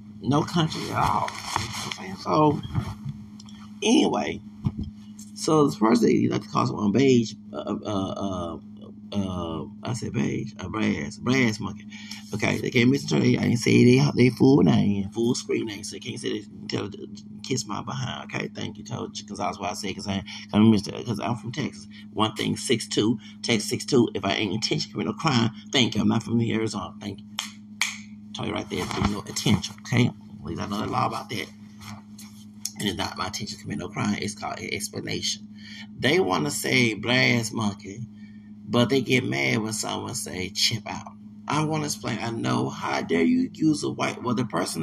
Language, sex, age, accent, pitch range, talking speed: English, male, 30-49, American, 105-115 Hz, 195 wpm